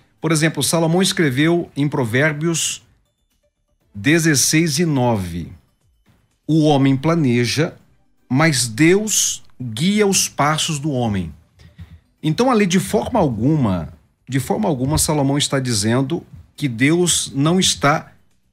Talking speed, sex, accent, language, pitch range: 105 wpm, male, Brazilian, Portuguese, 125-180 Hz